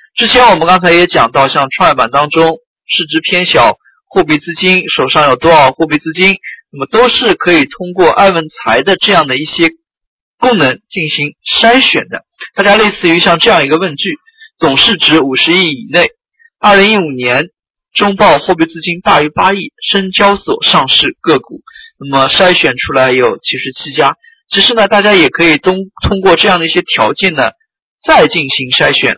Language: Chinese